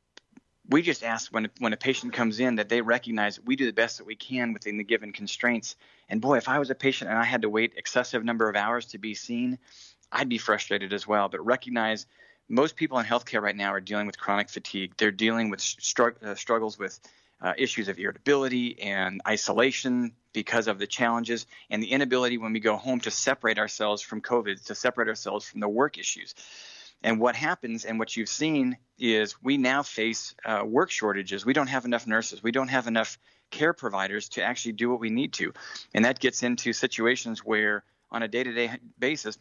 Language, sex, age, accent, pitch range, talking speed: English, male, 30-49, American, 110-125 Hz, 205 wpm